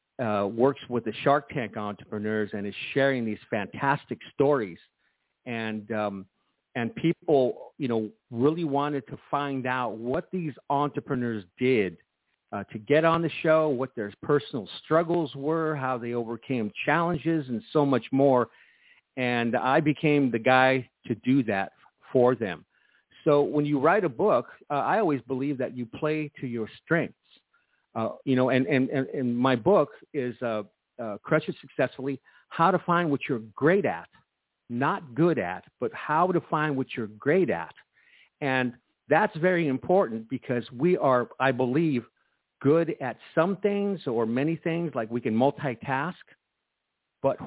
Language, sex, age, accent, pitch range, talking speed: English, male, 50-69, American, 120-155 Hz, 160 wpm